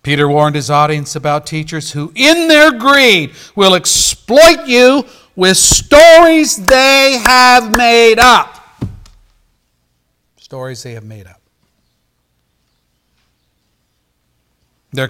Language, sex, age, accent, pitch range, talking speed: English, male, 60-79, American, 100-145 Hz, 100 wpm